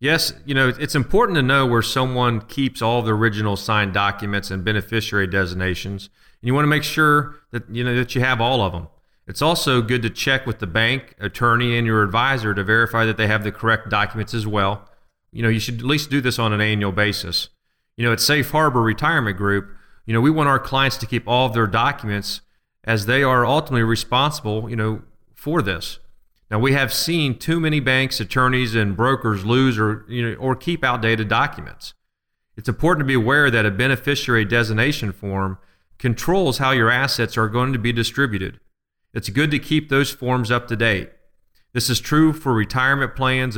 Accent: American